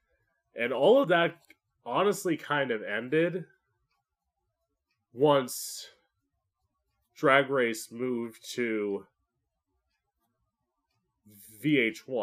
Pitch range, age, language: 100-130 Hz, 20-39, English